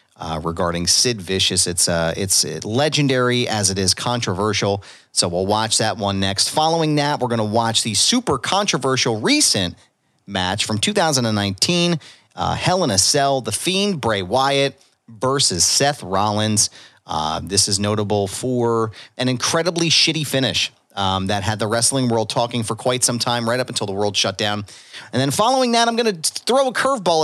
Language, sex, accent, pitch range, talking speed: English, male, American, 105-145 Hz, 180 wpm